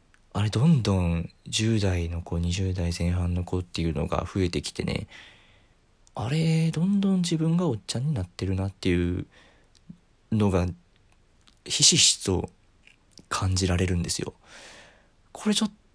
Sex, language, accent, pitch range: male, Japanese, native, 90-125 Hz